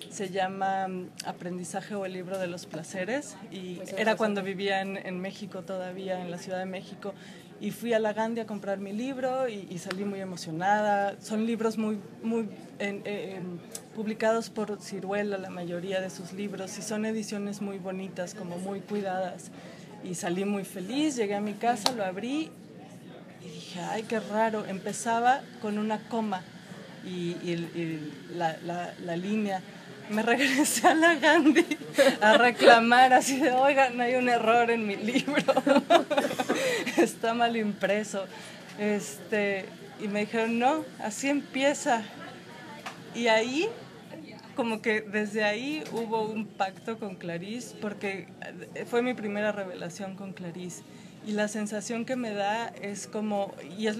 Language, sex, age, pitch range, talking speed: Spanish, female, 20-39, 190-230 Hz, 155 wpm